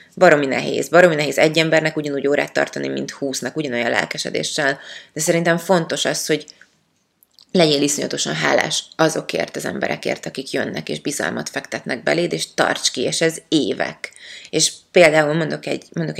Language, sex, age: Hungarian, female, 20-39